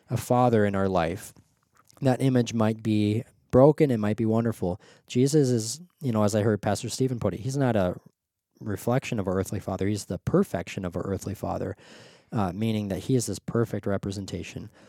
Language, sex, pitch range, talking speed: English, male, 100-120 Hz, 195 wpm